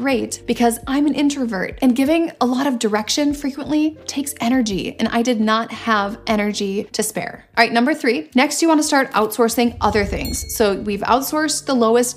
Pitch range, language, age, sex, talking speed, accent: 220-260 Hz, English, 30-49, female, 185 wpm, American